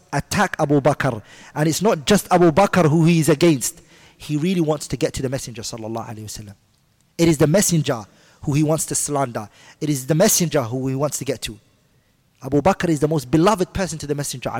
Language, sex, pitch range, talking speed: English, male, 140-200 Hz, 220 wpm